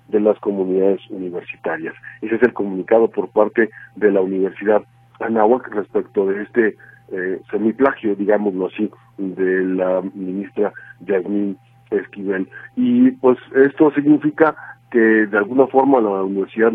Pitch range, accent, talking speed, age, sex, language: 100-120 Hz, Mexican, 130 wpm, 50-69, male, Spanish